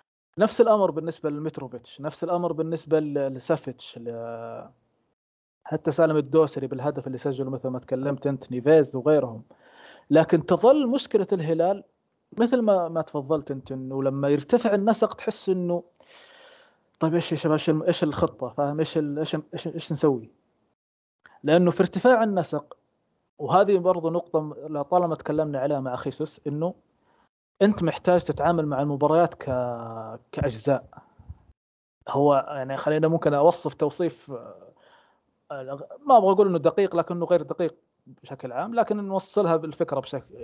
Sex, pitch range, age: male, 140-175 Hz, 20-39